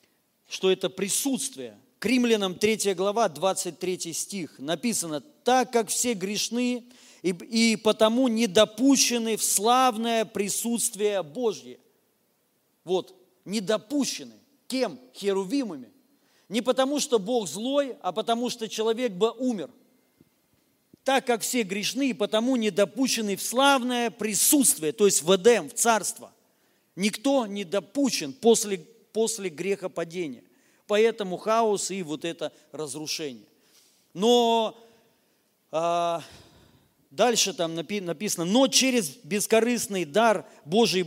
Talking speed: 110 wpm